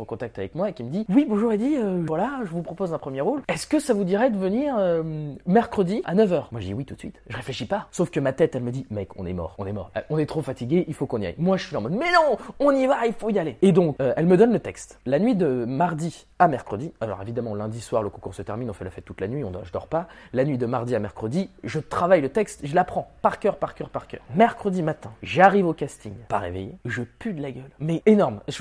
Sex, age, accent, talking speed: male, 20-39, French, 305 wpm